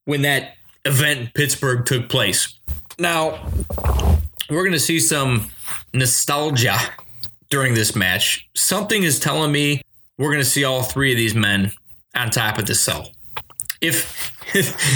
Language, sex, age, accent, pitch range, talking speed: English, male, 20-39, American, 125-175 Hz, 150 wpm